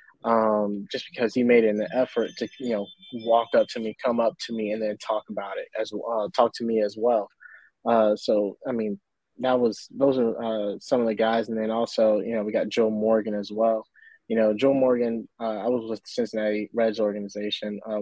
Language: English